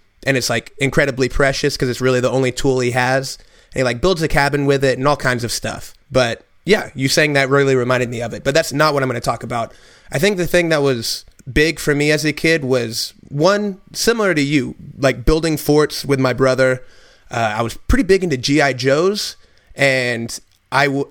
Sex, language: male, English